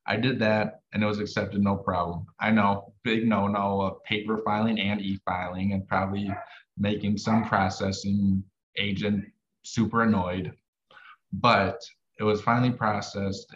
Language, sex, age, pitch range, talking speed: English, male, 20-39, 100-115 Hz, 135 wpm